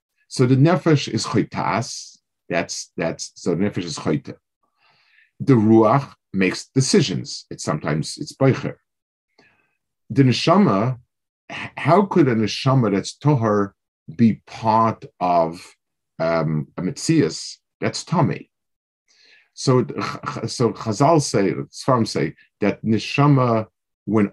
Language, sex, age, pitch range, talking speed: English, male, 50-69, 105-140 Hz, 110 wpm